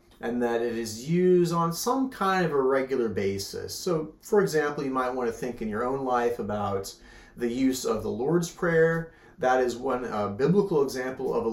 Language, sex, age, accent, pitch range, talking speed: English, male, 30-49, American, 115-155 Hz, 205 wpm